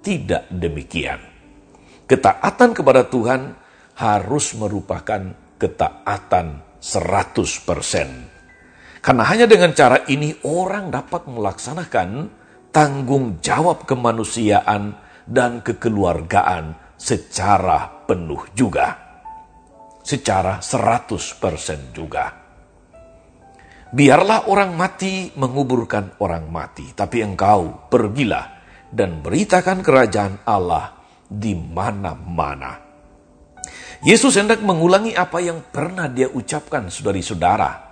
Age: 50-69